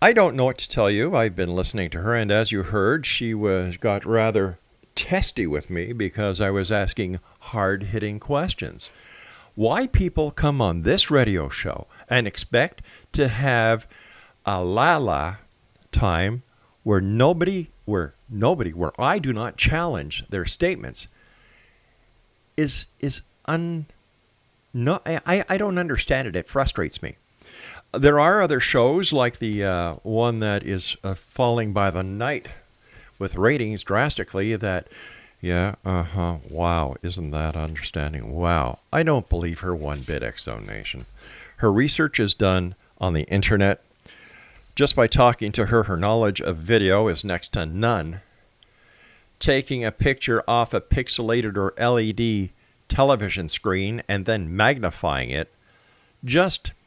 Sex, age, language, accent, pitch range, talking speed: male, 50-69, English, American, 90-120 Hz, 145 wpm